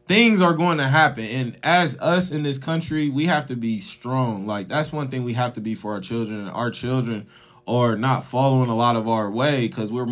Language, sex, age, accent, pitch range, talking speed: English, male, 20-39, American, 125-175 Hz, 230 wpm